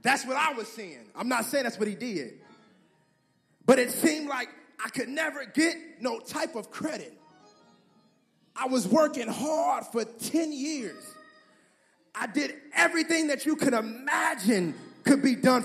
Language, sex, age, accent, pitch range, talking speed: English, male, 30-49, American, 235-310 Hz, 155 wpm